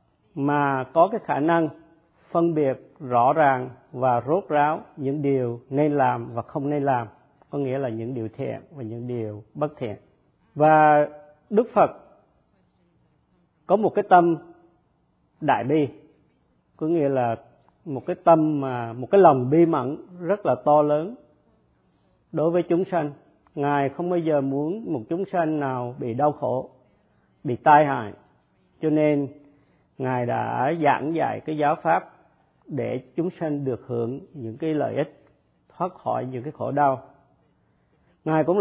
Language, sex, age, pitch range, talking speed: Vietnamese, male, 50-69, 125-160 Hz, 155 wpm